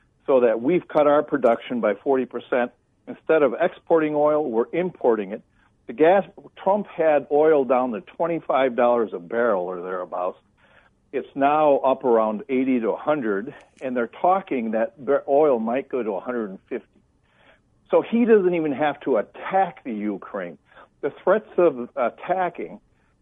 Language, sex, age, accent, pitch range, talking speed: English, male, 60-79, American, 125-165 Hz, 145 wpm